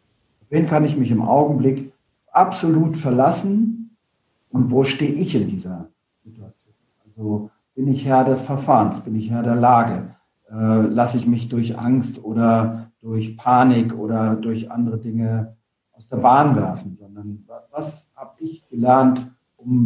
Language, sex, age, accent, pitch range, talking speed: German, male, 50-69, German, 115-145 Hz, 150 wpm